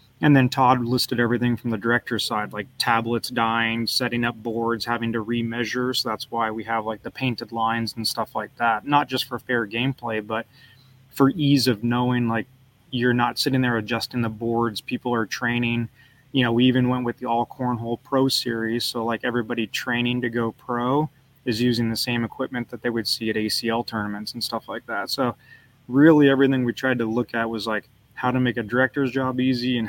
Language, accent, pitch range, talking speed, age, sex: English, American, 115-125 Hz, 210 wpm, 20-39, male